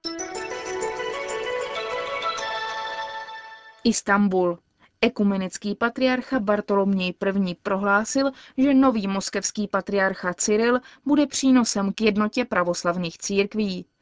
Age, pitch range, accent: 20-39, 190-245 Hz, native